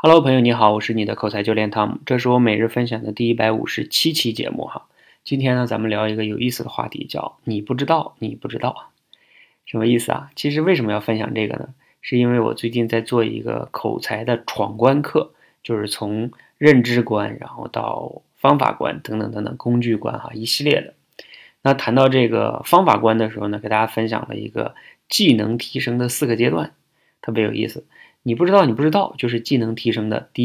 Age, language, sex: 20-39, Chinese, male